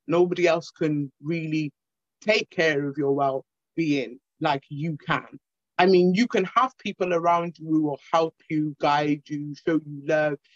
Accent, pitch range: British, 150-190 Hz